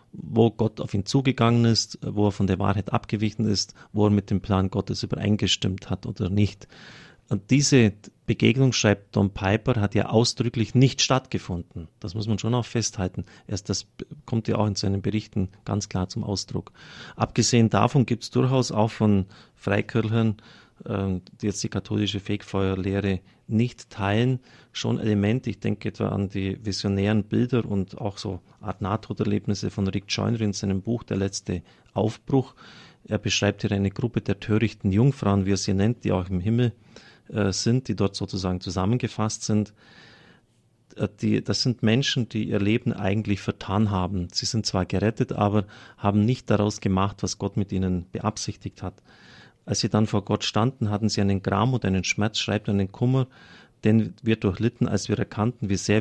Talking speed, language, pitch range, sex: 175 wpm, German, 100-115 Hz, male